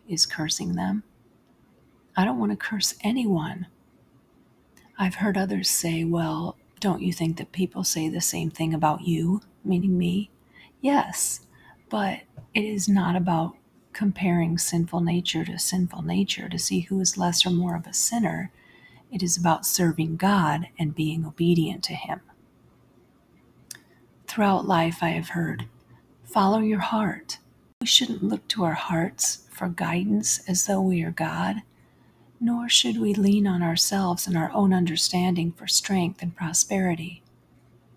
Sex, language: female, English